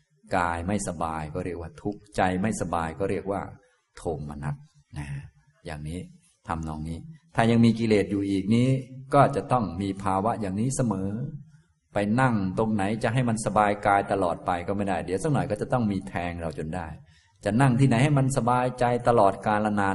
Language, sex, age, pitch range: Thai, male, 20-39, 95-130 Hz